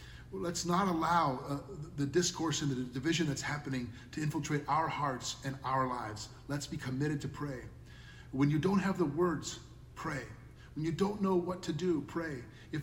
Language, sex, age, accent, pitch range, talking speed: English, male, 40-59, American, 120-160 Hz, 180 wpm